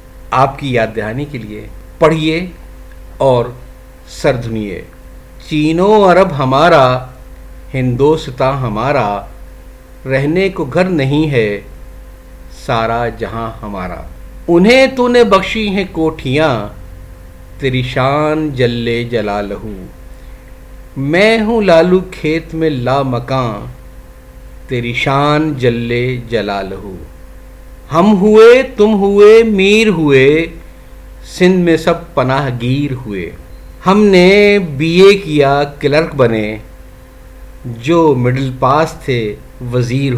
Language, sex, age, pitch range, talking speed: Urdu, male, 50-69, 105-165 Hz, 100 wpm